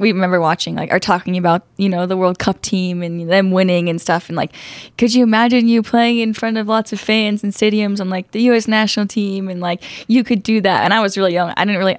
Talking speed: 265 wpm